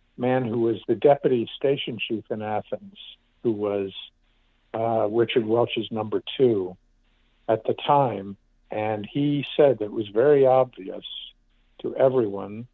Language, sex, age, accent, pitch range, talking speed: English, male, 60-79, American, 100-120 Hz, 135 wpm